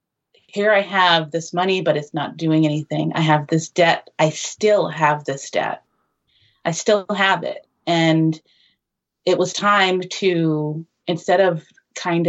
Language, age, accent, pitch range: English, 30-49, American, 160-195 Hz